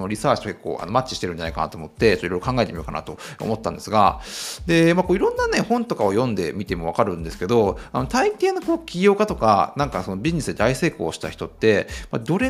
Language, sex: Japanese, male